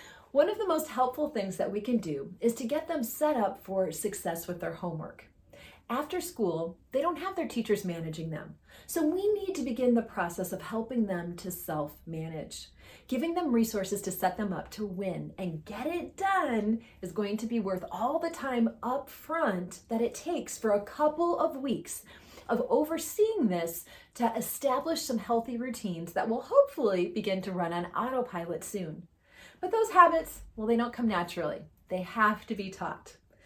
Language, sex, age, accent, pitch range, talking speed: English, female, 30-49, American, 185-275 Hz, 185 wpm